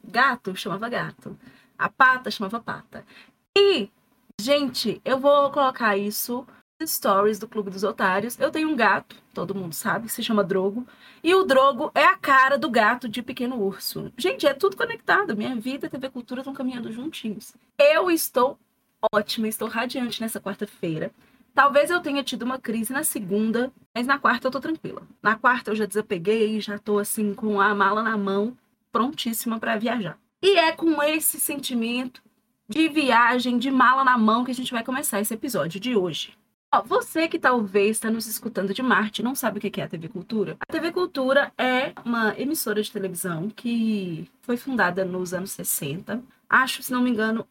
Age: 20-39